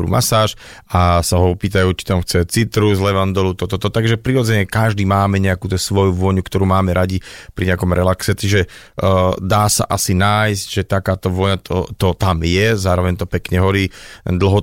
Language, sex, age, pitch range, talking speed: Slovak, male, 30-49, 90-105 Hz, 190 wpm